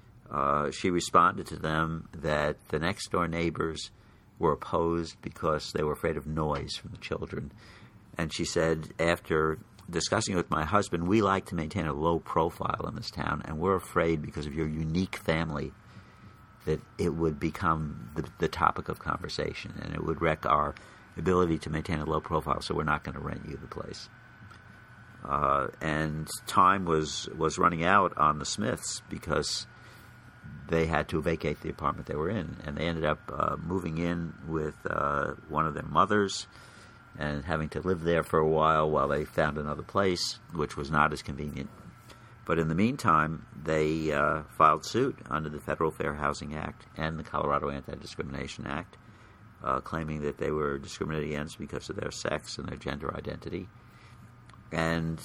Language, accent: English, American